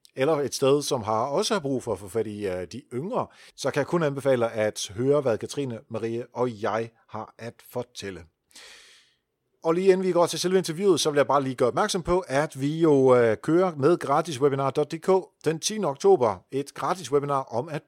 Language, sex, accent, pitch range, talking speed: Danish, male, native, 110-150 Hz, 200 wpm